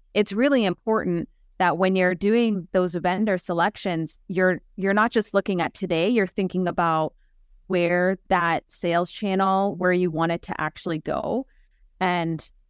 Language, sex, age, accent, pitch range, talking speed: English, female, 30-49, American, 165-200 Hz, 150 wpm